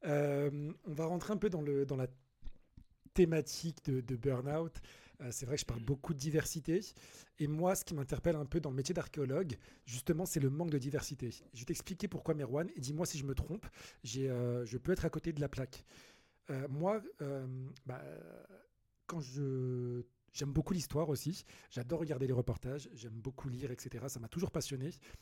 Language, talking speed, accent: French, 200 wpm, French